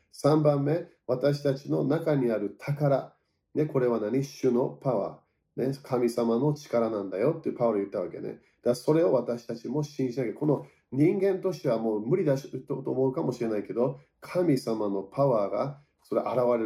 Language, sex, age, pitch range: Japanese, male, 40-59, 115-150 Hz